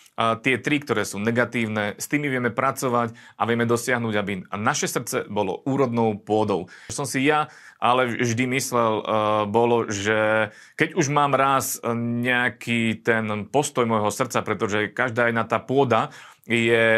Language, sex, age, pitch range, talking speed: Slovak, male, 30-49, 115-135 Hz, 145 wpm